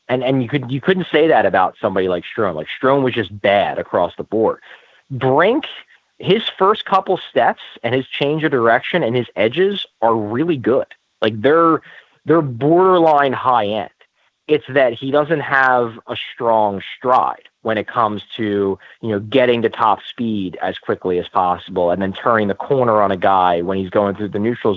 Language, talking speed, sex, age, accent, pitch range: English, 190 wpm, male, 30-49, American, 105-135 Hz